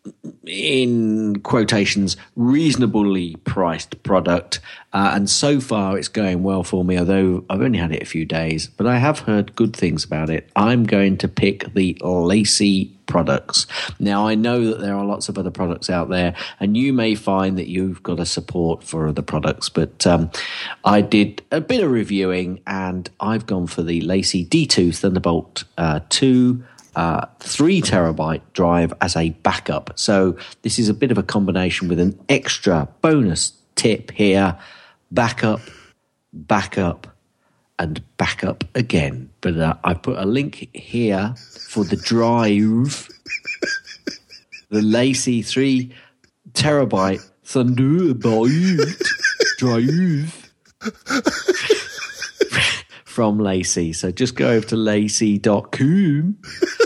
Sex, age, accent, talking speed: male, 40-59, British, 135 wpm